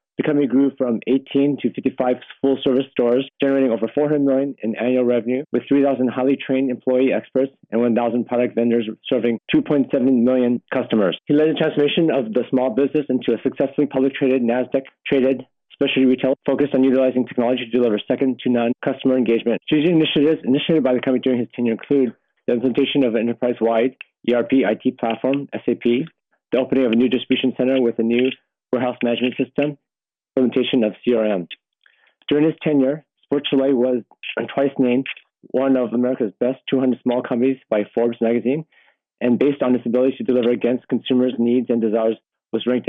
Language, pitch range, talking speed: English, 120-135 Hz, 175 wpm